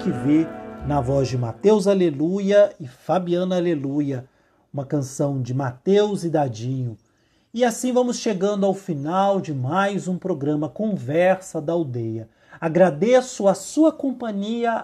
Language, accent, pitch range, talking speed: Portuguese, Brazilian, 135-195 Hz, 135 wpm